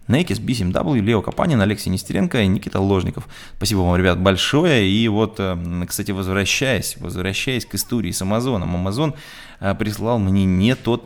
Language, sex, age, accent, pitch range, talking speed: Russian, male, 20-39, native, 95-125 Hz, 150 wpm